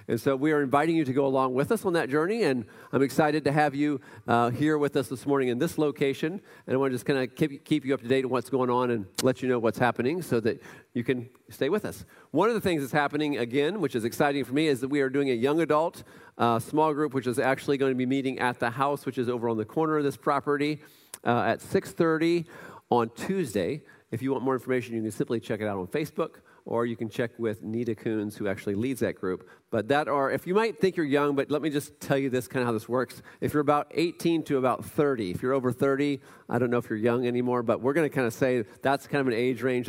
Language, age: English, 40-59